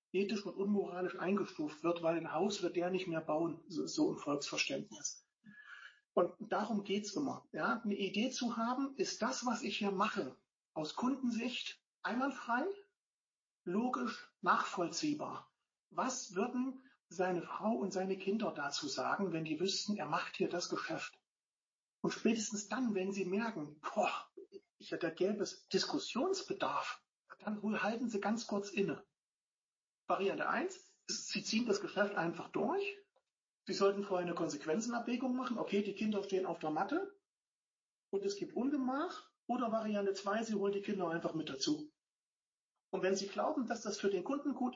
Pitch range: 180-245 Hz